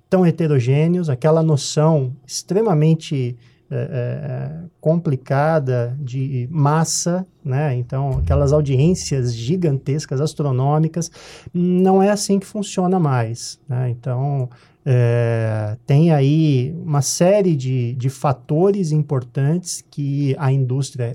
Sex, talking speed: male, 100 wpm